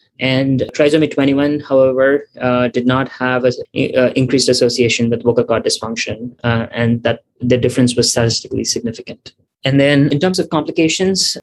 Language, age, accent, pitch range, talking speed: English, 20-39, Indian, 120-135 Hz, 155 wpm